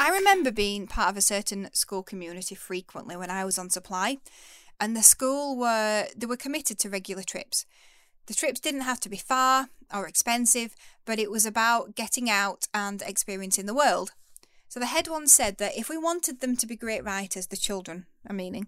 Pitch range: 195-250 Hz